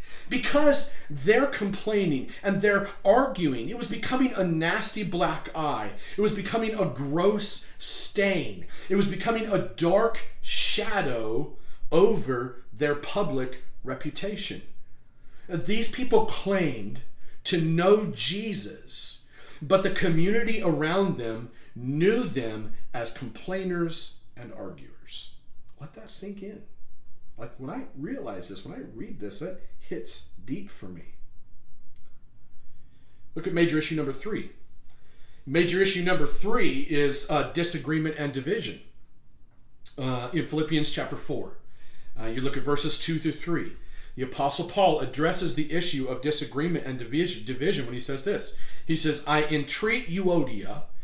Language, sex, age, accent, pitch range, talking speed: English, male, 40-59, American, 130-195 Hz, 130 wpm